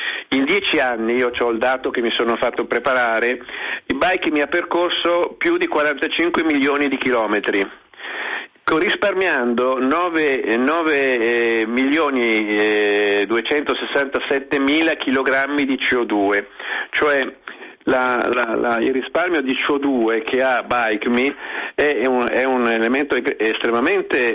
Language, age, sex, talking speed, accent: Italian, 50-69, male, 110 wpm, native